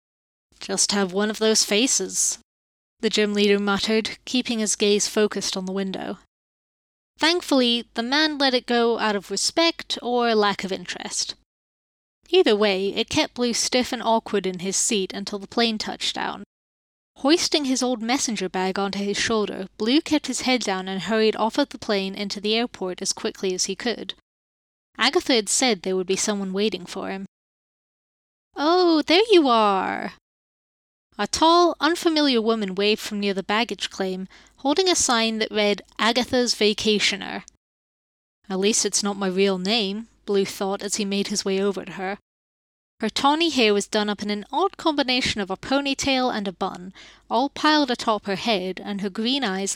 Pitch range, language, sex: 200-250 Hz, English, female